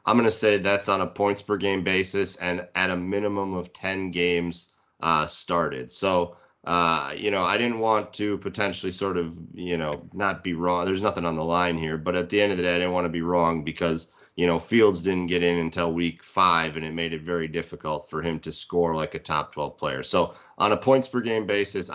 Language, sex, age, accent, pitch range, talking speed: English, male, 30-49, American, 85-95 Hz, 240 wpm